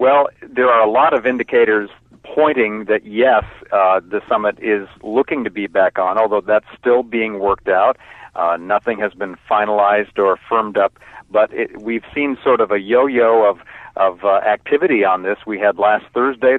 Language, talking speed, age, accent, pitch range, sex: English, 185 wpm, 50-69, American, 105-120 Hz, male